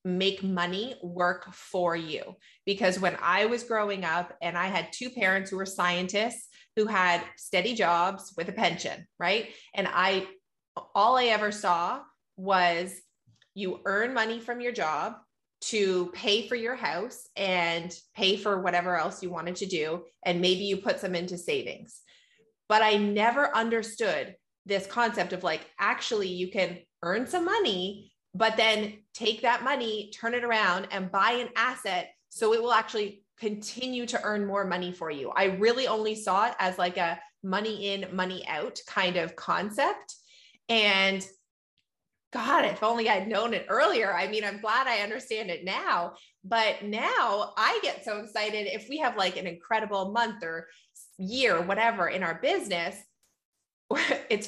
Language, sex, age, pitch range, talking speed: English, female, 20-39, 180-225 Hz, 165 wpm